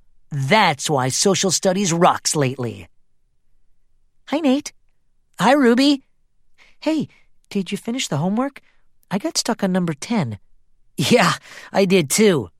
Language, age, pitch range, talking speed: English, 40-59, 140-225 Hz, 125 wpm